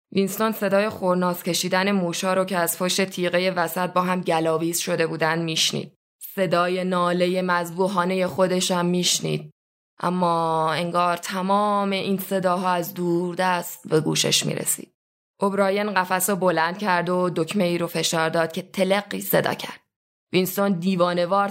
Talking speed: 140 wpm